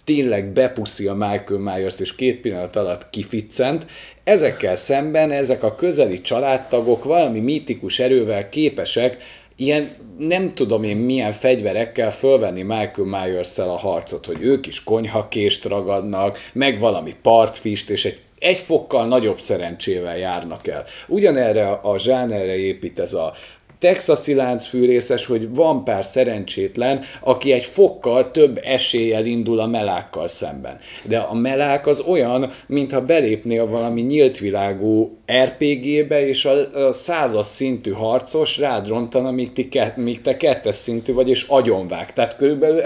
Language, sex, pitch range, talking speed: Hungarian, male, 105-140 Hz, 135 wpm